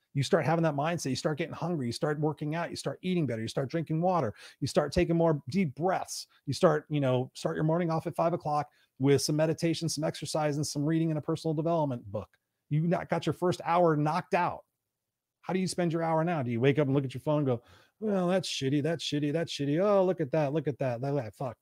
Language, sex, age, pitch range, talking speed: English, male, 30-49, 130-160 Hz, 265 wpm